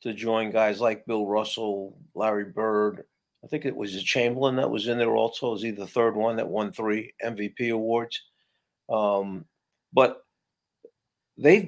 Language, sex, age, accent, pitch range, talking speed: English, male, 50-69, American, 110-140 Hz, 165 wpm